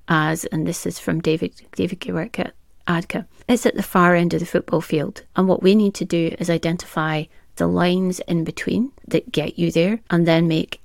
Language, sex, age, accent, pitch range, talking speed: English, female, 30-49, British, 165-185 Hz, 200 wpm